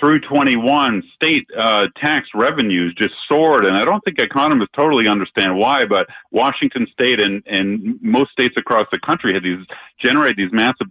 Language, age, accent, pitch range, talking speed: English, 40-59, American, 100-135 Hz, 170 wpm